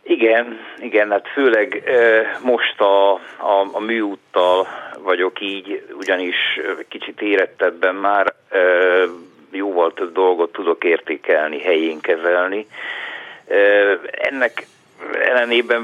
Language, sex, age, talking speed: Hungarian, male, 50-69, 90 wpm